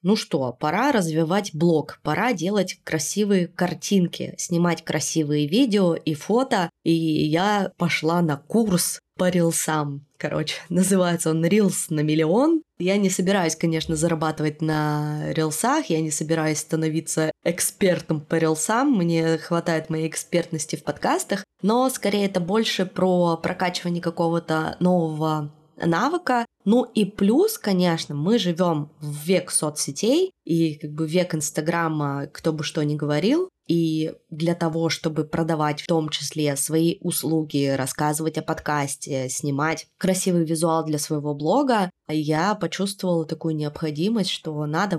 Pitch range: 155-185 Hz